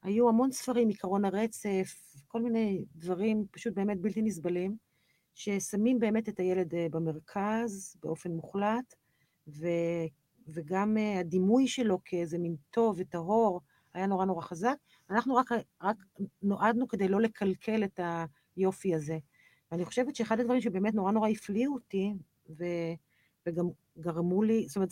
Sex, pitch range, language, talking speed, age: female, 175-225 Hz, Hebrew, 130 wpm, 40-59